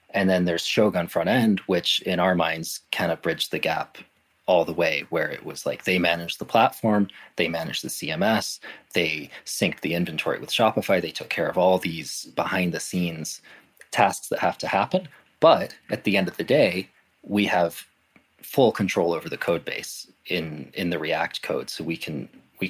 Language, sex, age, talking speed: English, male, 20-39, 190 wpm